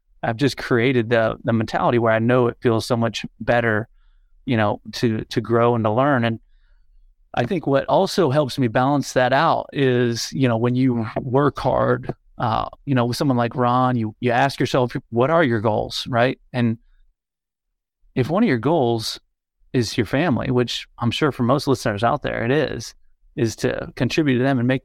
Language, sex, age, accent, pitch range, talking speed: English, male, 30-49, American, 115-135 Hz, 195 wpm